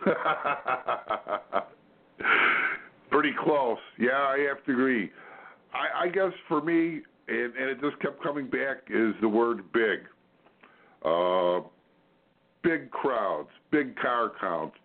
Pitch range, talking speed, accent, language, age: 100-140 Hz, 115 wpm, American, English, 50-69